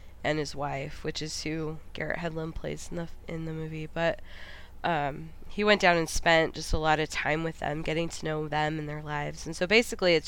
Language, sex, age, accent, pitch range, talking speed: English, female, 20-39, American, 145-175 Hz, 230 wpm